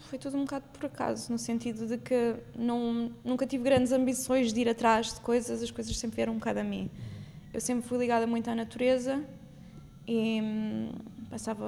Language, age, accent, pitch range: Portuguese, 20-39, Brazilian, 225-265 Hz